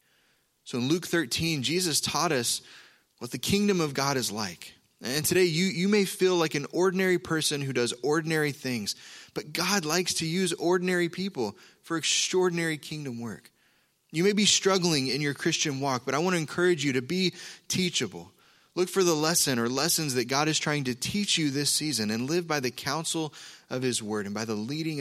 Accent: American